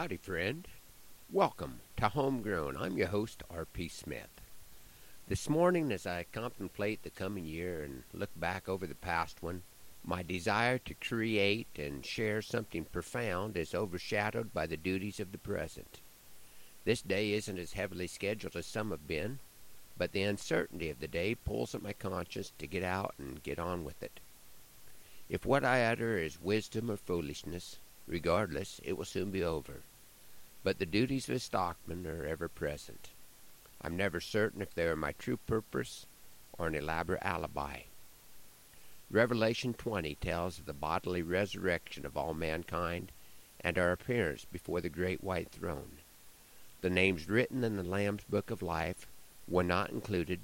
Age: 50-69